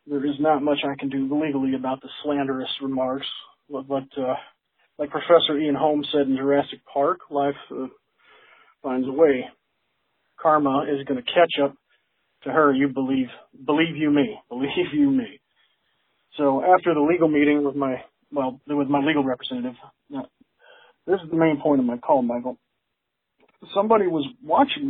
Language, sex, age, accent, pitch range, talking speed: English, male, 40-59, American, 140-175 Hz, 165 wpm